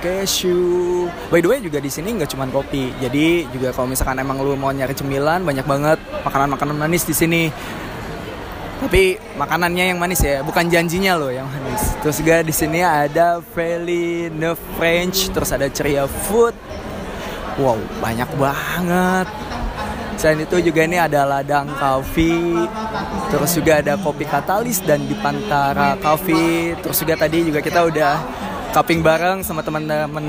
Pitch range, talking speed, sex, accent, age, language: 150-185 Hz, 155 wpm, male, native, 20-39, Indonesian